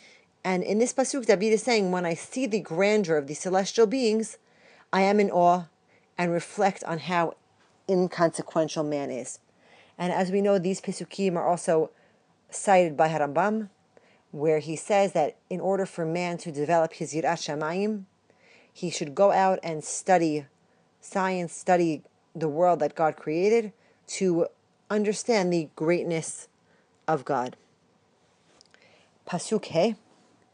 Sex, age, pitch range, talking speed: female, 40-59, 160-200 Hz, 140 wpm